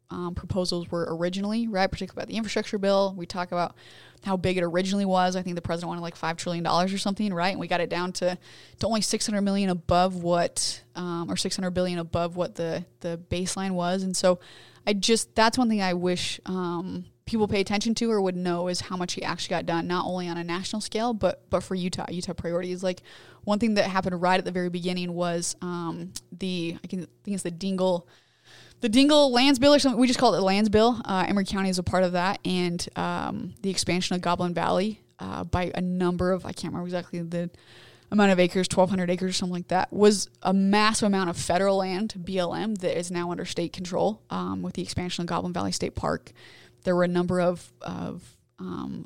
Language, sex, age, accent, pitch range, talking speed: English, female, 20-39, American, 175-195 Hz, 230 wpm